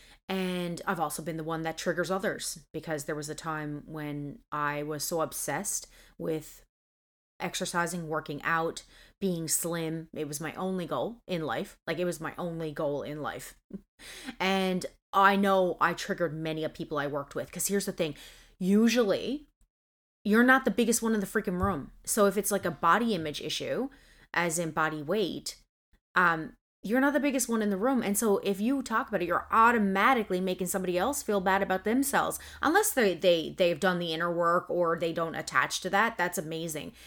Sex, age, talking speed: female, 30-49, 195 wpm